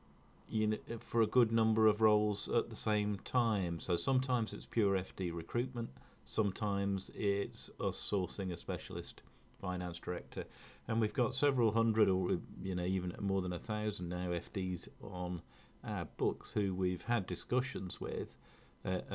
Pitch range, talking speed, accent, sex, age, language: 90-110 Hz, 155 wpm, British, male, 40-59, English